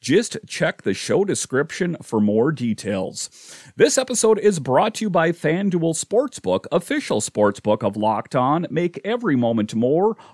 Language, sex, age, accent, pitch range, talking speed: English, male, 40-59, American, 125-185 Hz, 150 wpm